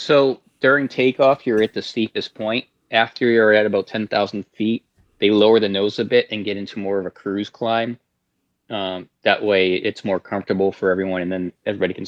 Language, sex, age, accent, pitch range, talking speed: English, male, 20-39, American, 95-110 Hz, 205 wpm